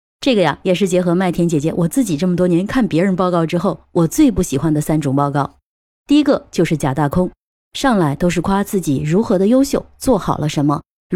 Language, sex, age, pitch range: Chinese, female, 20-39, 155-220 Hz